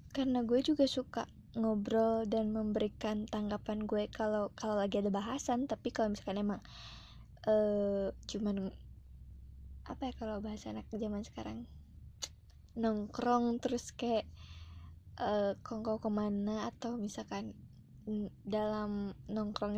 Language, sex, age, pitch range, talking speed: Indonesian, female, 20-39, 205-245 Hz, 110 wpm